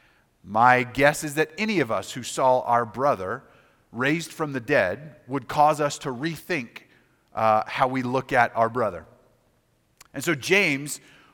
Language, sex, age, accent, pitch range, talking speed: English, male, 30-49, American, 110-150 Hz, 160 wpm